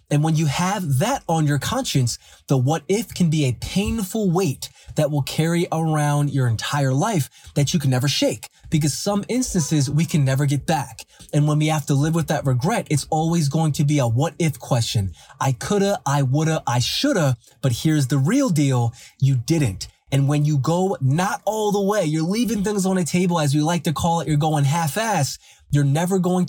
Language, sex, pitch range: English, male, 140-185 Hz